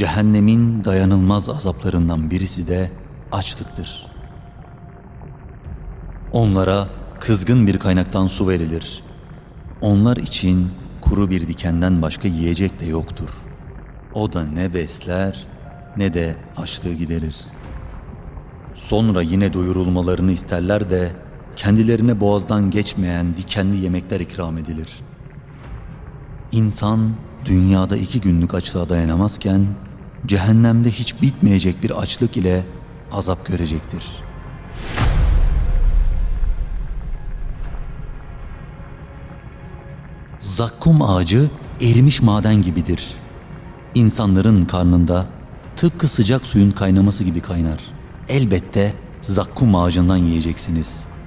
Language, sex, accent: Turkish, male, native